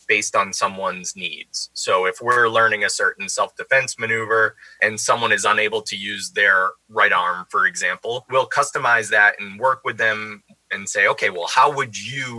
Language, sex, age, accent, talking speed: English, male, 20-39, American, 180 wpm